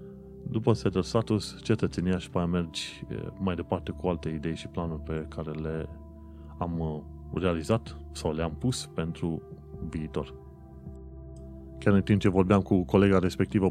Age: 30-49